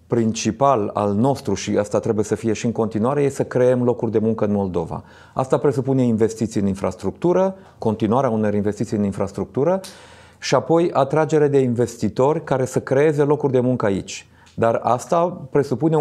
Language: Romanian